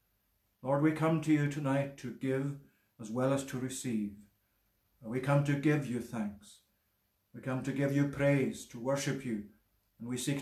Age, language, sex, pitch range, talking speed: 60-79, English, male, 120-145 Hz, 180 wpm